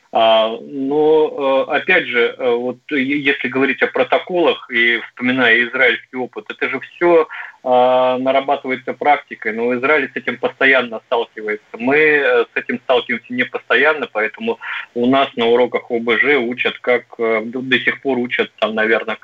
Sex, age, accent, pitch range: male, 30-49, native, 115-140 Hz